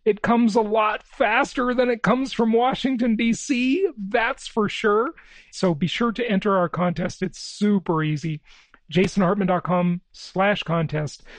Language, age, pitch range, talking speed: English, 40-59, 150-195 Hz, 140 wpm